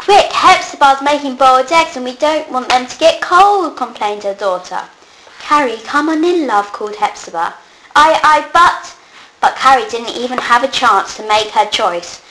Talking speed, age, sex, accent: 180 wpm, 20-39, female, British